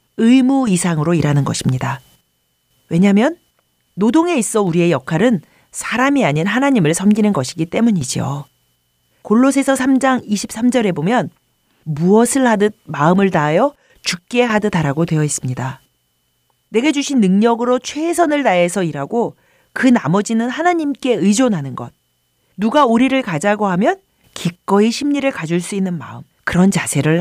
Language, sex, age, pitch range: Korean, female, 40-59, 160-240 Hz